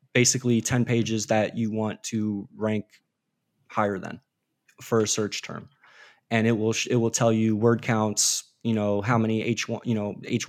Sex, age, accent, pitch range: male, 20-39, American, 110-130 Hz